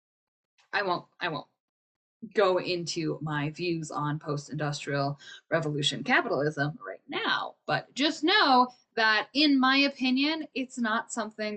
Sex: female